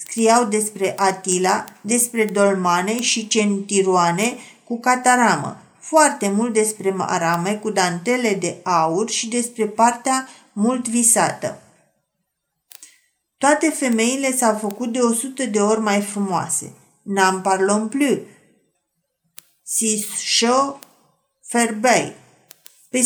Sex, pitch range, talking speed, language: female, 205-245 Hz, 100 wpm, Romanian